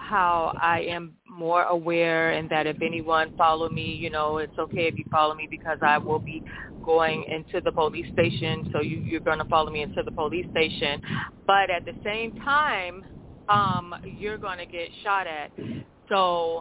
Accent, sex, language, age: American, female, English, 30-49